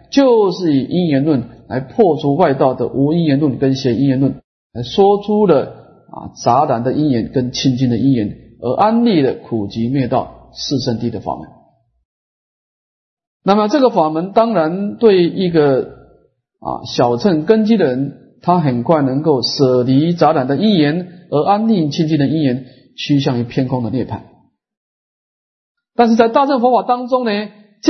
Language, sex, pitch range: Chinese, male, 130-195 Hz